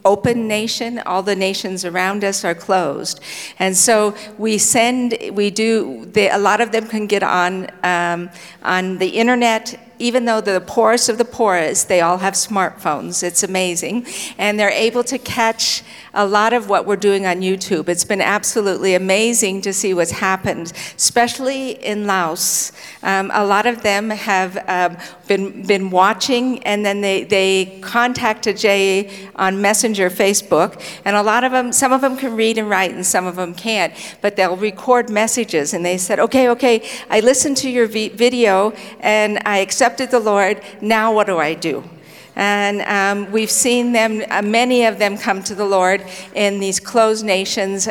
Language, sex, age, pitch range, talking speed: English, female, 50-69, 190-225 Hz, 180 wpm